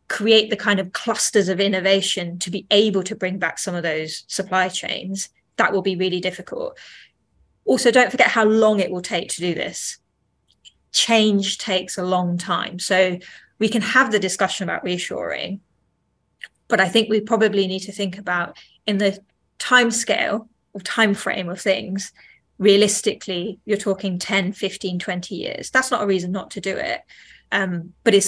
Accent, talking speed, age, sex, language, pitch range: British, 175 wpm, 20-39, female, English, 185-215 Hz